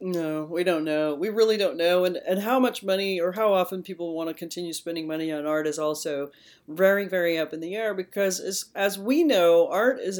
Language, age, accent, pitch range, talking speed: English, 40-59, American, 150-180 Hz, 230 wpm